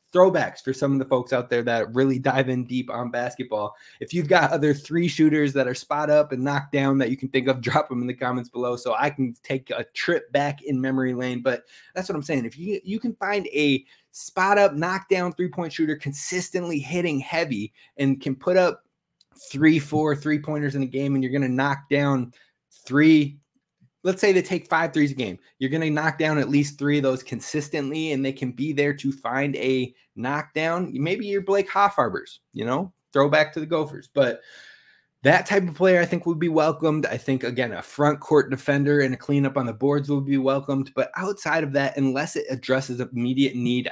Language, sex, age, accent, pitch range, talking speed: English, male, 20-39, American, 130-155 Hz, 215 wpm